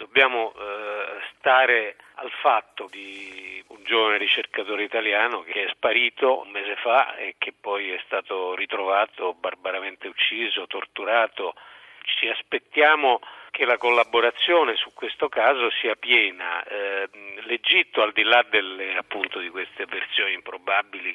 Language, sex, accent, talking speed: Italian, male, native, 130 wpm